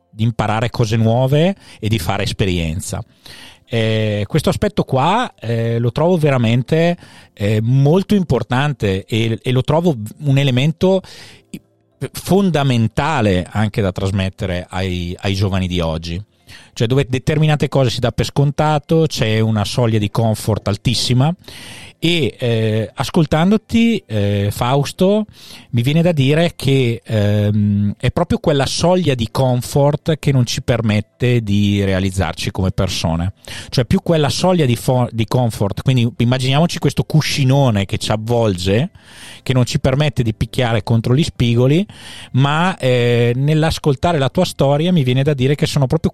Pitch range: 110-150 Hz